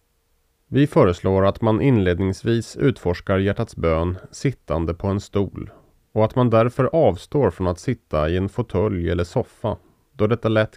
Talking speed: 155 wpm